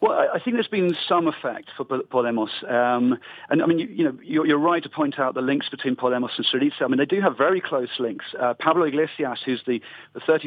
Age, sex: 40-59, male